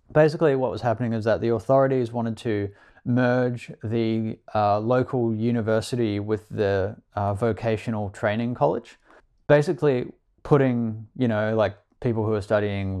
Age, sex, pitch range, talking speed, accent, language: 20-39, male, 105-125 Hz, 140 wpm, Australian, English